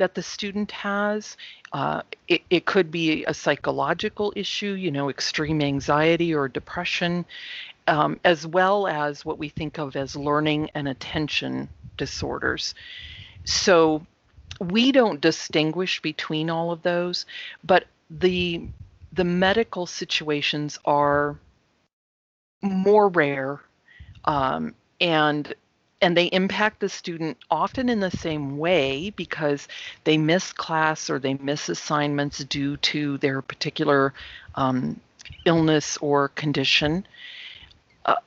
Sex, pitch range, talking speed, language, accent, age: female, 145-185 Hz, 120 wpm, English, American, 40-59